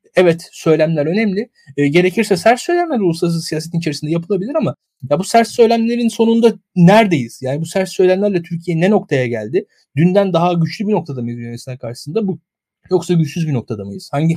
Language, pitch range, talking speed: Turkish, 145-195 Hz, 170 wpm